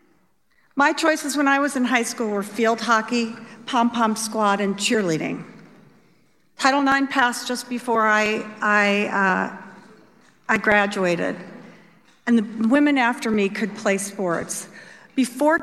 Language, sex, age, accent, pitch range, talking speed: English, female, 50-69, American, 210-270 Hz, 130 wpm